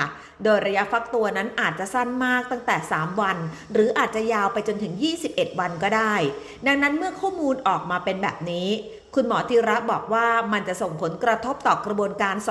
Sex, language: female, Thai